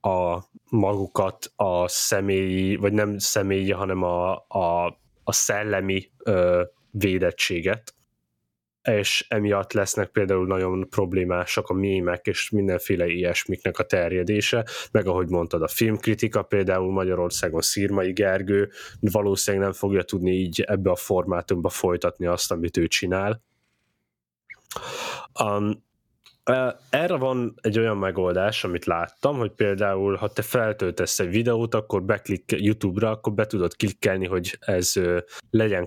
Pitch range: 90-110 Hz